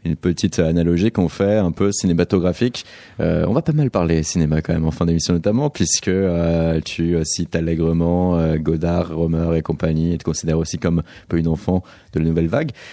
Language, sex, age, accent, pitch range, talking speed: French, male, 30-49, French, 80-105 Hz, 205 wpm